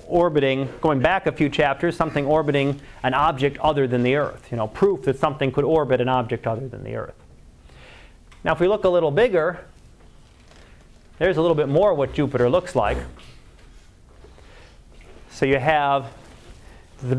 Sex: male